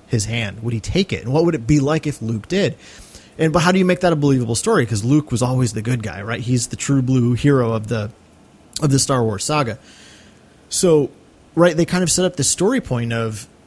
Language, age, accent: English, 30-49, American